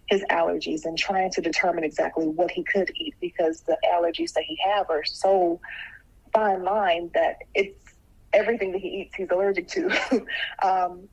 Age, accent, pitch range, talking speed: 20-39, American, 170-195 Hz, 165 wpm